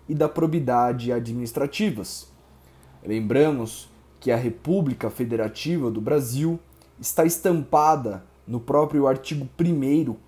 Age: 20-39